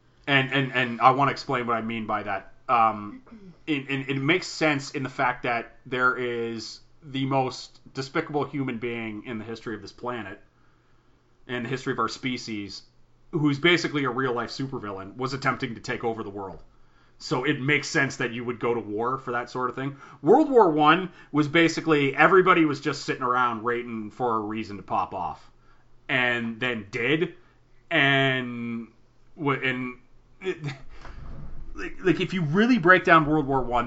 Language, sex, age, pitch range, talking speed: English, male, 30-49, 115-140 Hz, 175 wpm